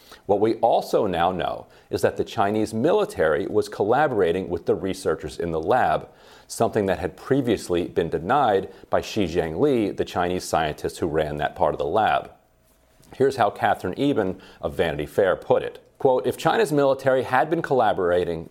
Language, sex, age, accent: English, male, 40-59, American